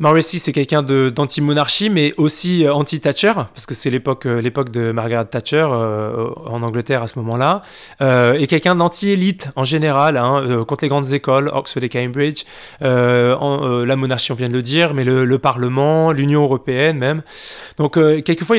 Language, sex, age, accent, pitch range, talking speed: French, male, 20-39, French, 125-150 Hz, 185 wpm